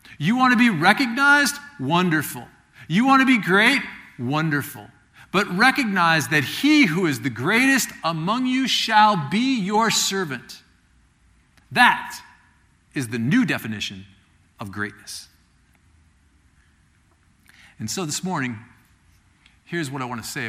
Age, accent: 50-69, American